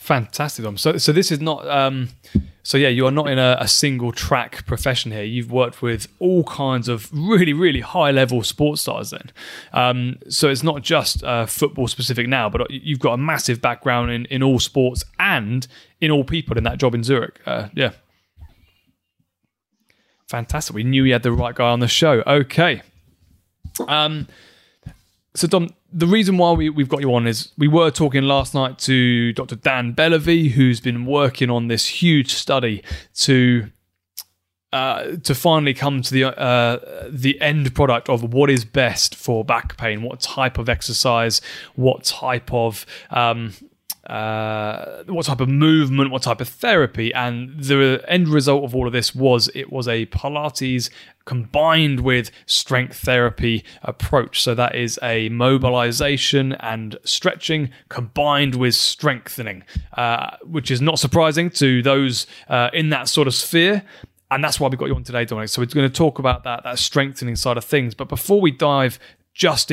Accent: British